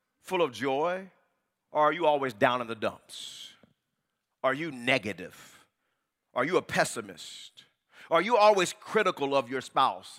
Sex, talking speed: male, 145 wpm